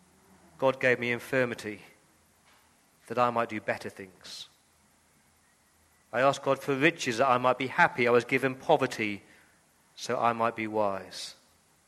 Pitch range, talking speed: 90-125 Hz, 145 wpm